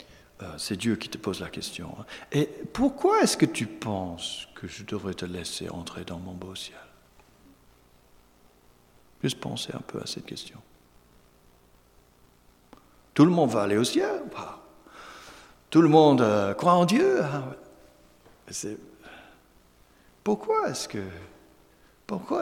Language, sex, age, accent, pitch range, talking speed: French, male, 60-79, French, 85-115 Hz, 120 wpm